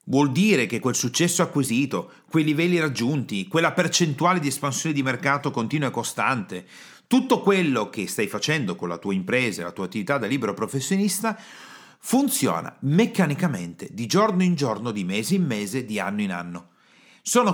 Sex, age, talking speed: male, 40-59, 165 wpm